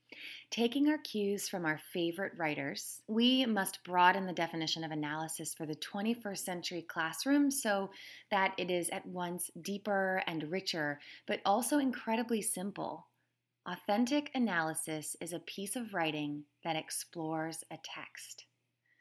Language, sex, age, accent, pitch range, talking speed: English, female, 20-39, American, 160-215 Hz, 135 wpm